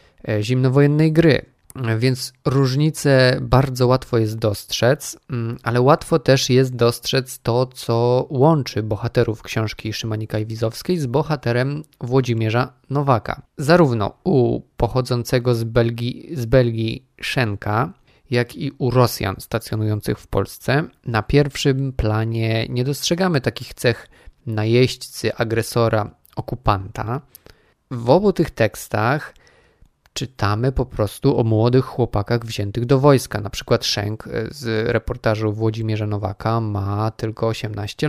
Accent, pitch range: native, 110-130 Hz